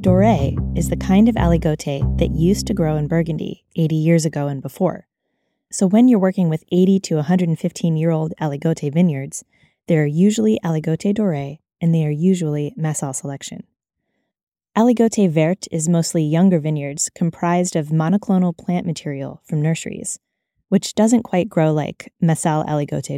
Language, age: English, 20-39